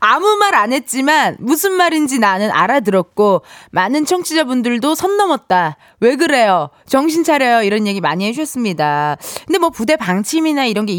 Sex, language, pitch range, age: female, Korean, 210-320 Hz, 20-39